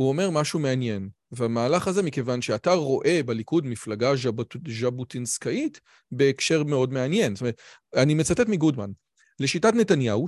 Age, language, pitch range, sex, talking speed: 40-59, Hebrew, 125-165 Hz, male, 130 wpm